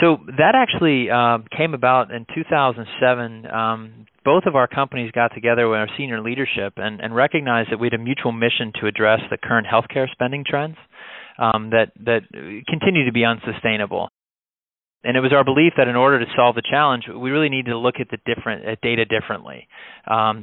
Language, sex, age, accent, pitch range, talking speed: English, male, 30-49, American, 110-130 Hz, 195 wpm